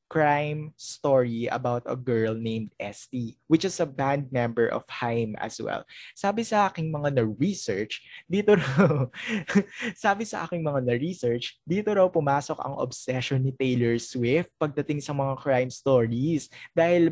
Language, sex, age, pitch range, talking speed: Filipino, male, 20-39, 120-160 Hz, 145 wpm